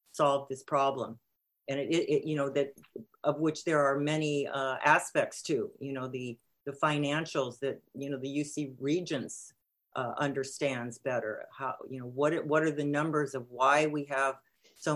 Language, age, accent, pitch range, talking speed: English, 50-69, American, 135-155 Hz, 175 wpm